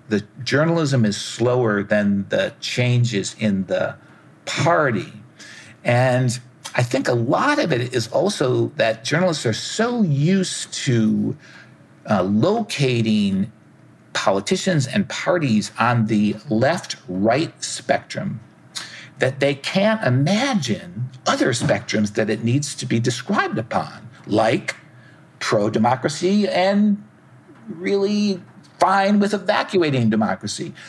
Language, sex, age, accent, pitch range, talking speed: English, male, 50-69, American, 115-170 Hz, 105 wpm